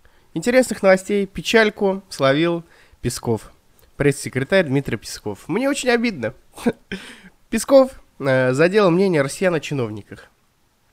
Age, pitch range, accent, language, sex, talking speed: 20-39, 125-190 Hz, native, Russian, male, 95 wpm